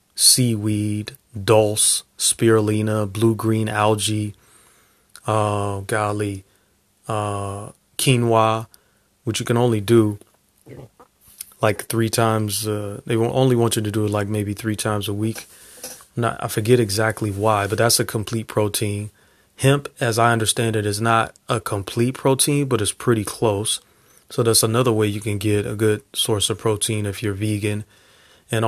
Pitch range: 105-115 Hz